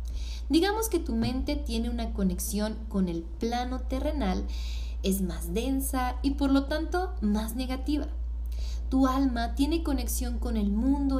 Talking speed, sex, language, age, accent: 145 wpm, female, Spanish, 20-39, Mexican